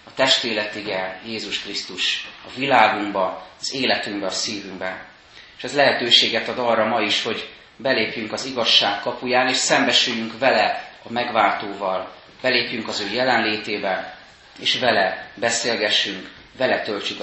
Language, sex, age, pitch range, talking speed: Hungarian, male, 30-49, 105-130 Hz, 120 wpm